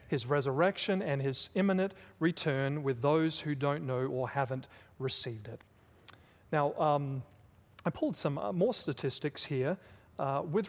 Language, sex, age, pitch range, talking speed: English, male, 40-59, 135-165 Hz, 140 wpm